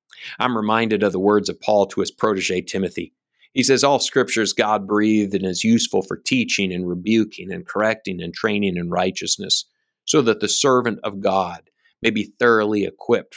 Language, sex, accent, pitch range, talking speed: English, male, American, 95-110 Hz, 175 wpm